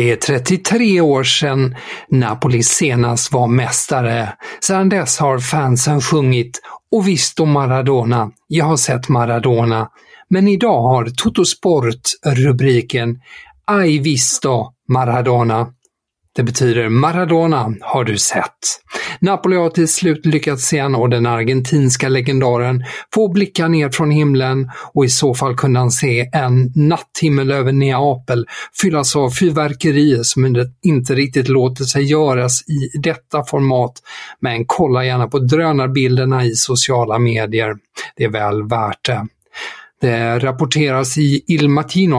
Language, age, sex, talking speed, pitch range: Swedish, 50-69, male, 130 wpm, 120-150 Hz